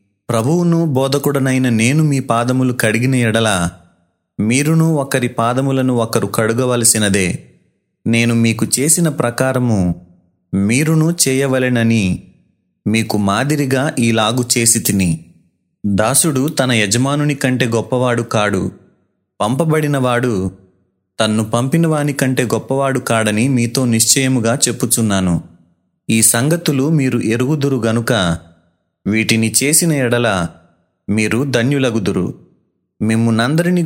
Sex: male